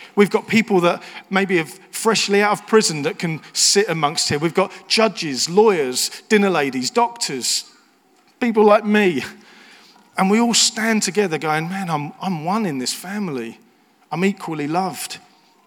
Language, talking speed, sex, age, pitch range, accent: English, 155 wpm, male, 40-59, 135-190 Hz, British